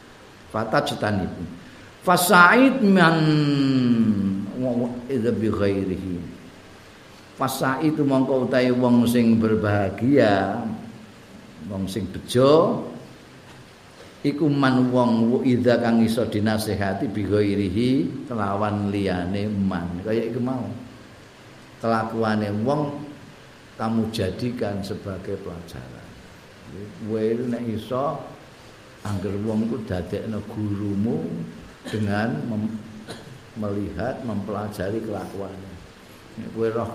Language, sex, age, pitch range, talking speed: Indonesian, male, 50-69, 100-120 Hz, 80 wpm